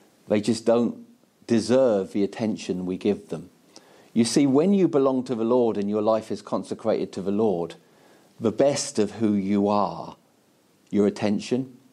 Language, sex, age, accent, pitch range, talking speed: English, male, 50-69, British, 110-130 Hz, 165 wpm